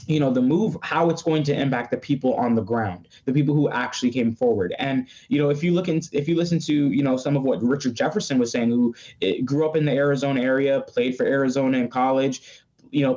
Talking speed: 245 wpm